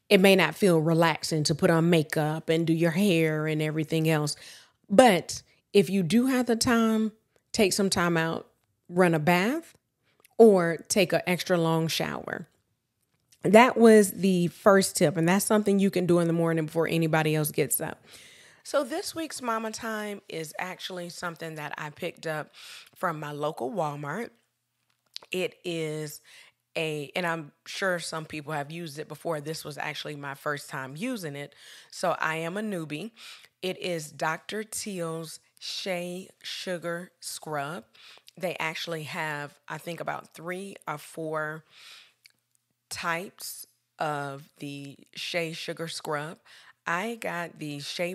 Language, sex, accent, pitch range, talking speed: English, female, American, 155-185 Hz, 150 wpm